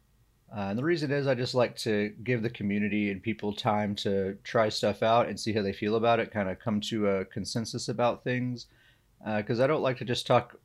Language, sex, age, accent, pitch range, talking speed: English, male, 30-49, American, 105-125 Hz, 235 wpm